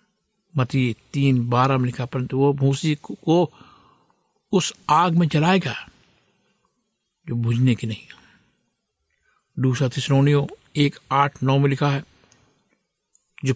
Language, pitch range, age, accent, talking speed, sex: Hindi, 135-165 Hz, 60-79, native, 110 wpm, male